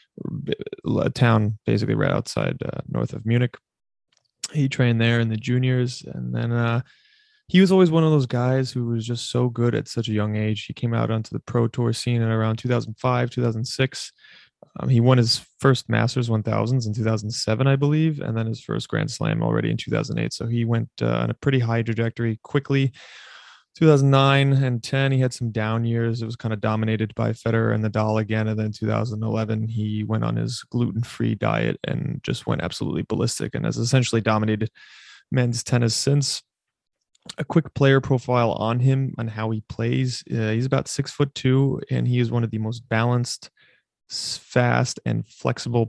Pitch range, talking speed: 110-130 Hz, 185 wpm